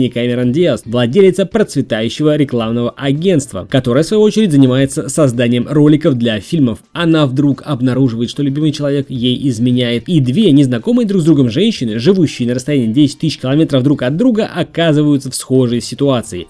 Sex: male